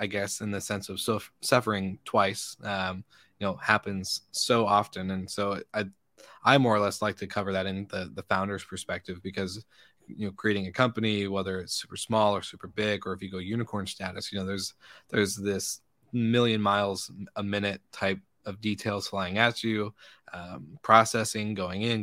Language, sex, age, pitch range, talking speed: English, male, 20-39, 95-105 Hz, 185 wpm